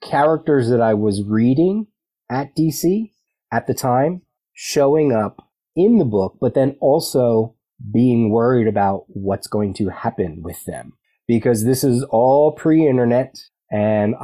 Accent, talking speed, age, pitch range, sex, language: American, 140 wpm, 30-49, 100-130 Hz, male, English